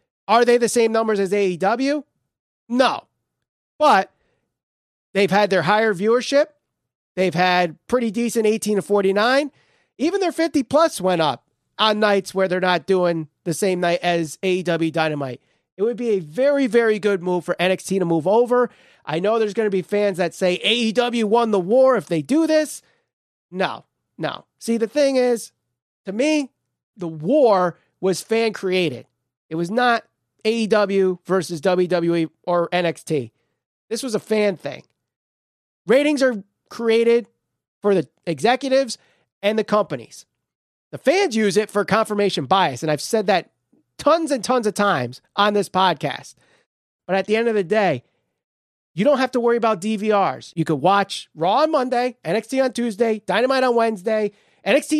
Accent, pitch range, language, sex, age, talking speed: American, 180-235 Hz, English, male, 30-49, 165 wpm